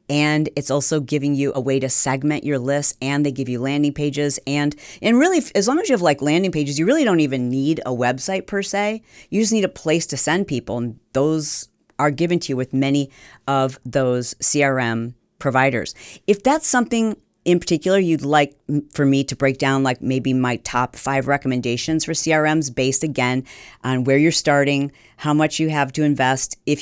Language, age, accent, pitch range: English, 40-59, American, 130-160 Hz